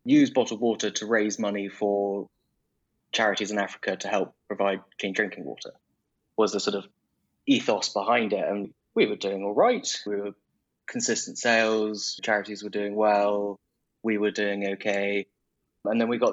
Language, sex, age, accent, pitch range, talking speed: English, male, 20-39, British, 95-105 Hz, 165 wpm